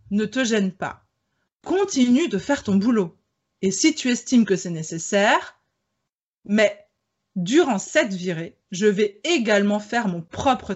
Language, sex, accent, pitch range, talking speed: French, female, French, 195-270 Hz, 145 wpm